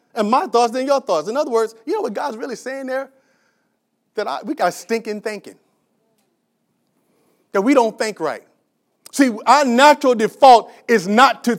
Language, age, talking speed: English, 40-59, 175 wpm